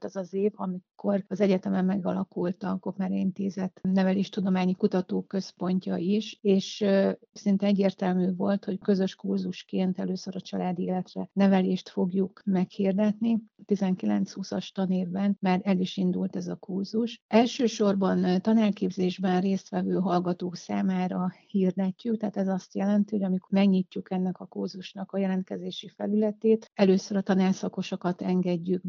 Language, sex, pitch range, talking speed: Hungarian, female, 185-200 Hz, 125 wpm